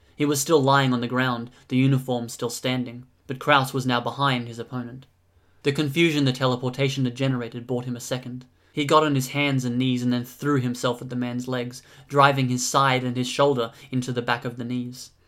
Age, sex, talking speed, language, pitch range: 20-39, male, 215 wpm, English, 120-135 Hz